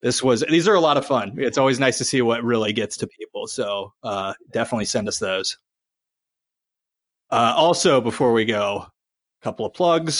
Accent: American